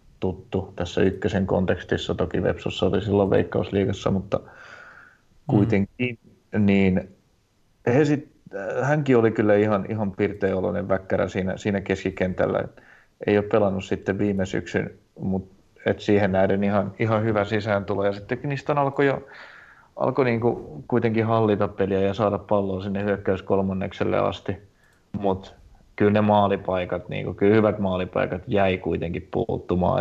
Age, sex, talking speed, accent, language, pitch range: 30-49, male, 130 wpm, native, Finnish, 95-105 Hz